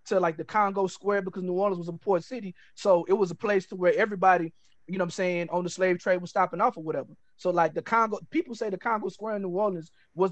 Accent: American